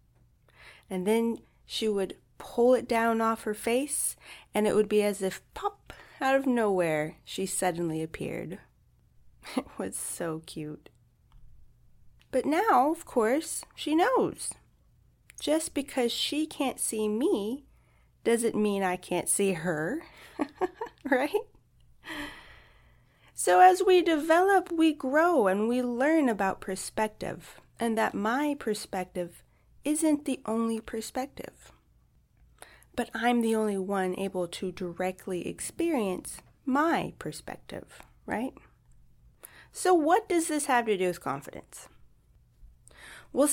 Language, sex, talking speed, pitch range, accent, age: English, female, 120 wpm, 185-290 Hz, American, 30-49